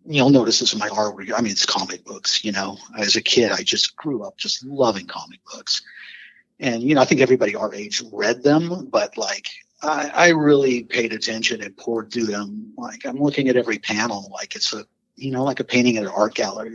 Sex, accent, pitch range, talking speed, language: male, American, 110-135 Hz, 225 wpm, English